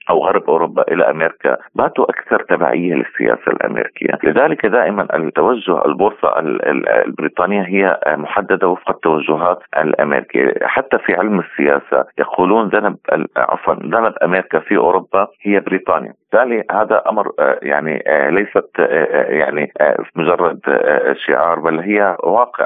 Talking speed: 115 wpm